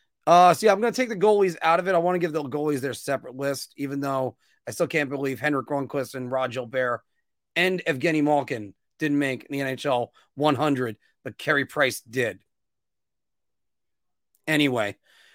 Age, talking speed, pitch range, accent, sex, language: 30-49, 180 wpm, 140-185 Hz, American, male, English